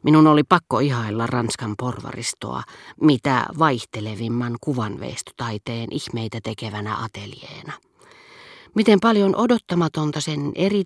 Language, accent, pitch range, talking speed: Finnish, native, 120-155 Hz, 95 wpm